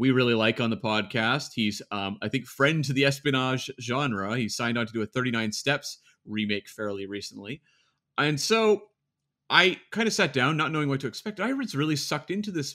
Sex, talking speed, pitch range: male, 210 wpm, 120-165 Hz